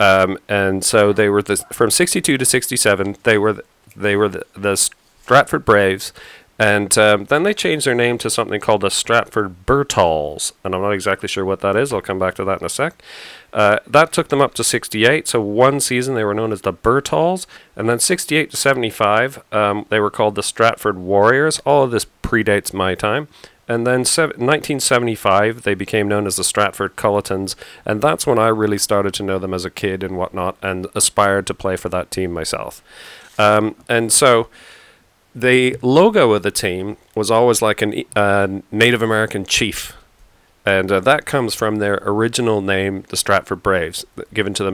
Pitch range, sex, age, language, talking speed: 100-120 Hz, male, 40-59, English, 195 wpm